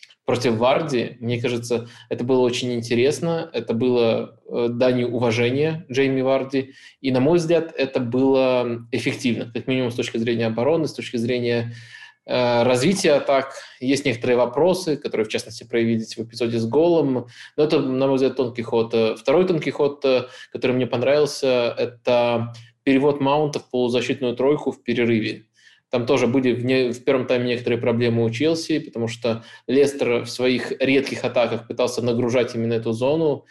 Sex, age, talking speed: male, 20-39, 160 wpm